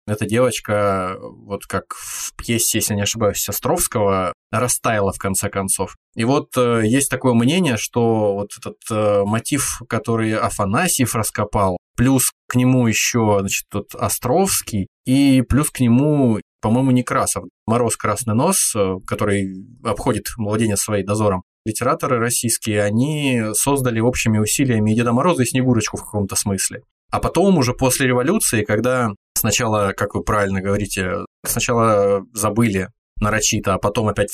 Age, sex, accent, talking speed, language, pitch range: 20-39, male, native, 145 wpm, Russian, 100-125 Hz